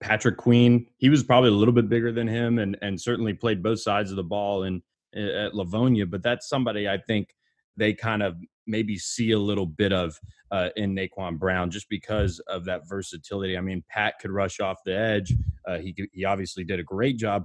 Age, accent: 20-39, American